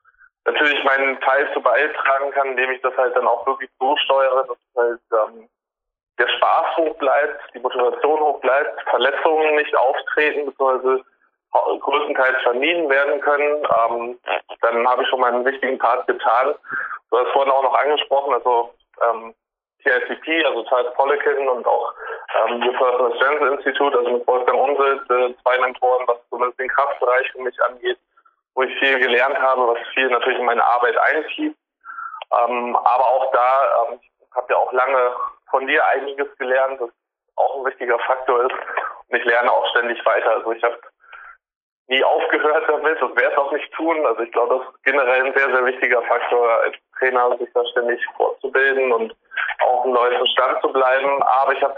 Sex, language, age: male, German, 20-39